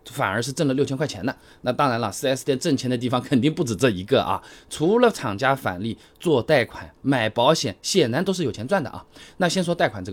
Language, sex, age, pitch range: Chinese, male, 20-39, 115-175 Hz